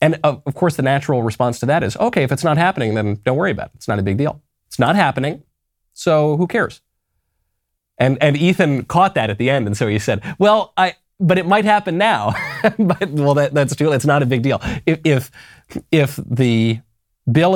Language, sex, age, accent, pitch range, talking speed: English, male, 30-49, American, 105-150 Hz, 220 wpm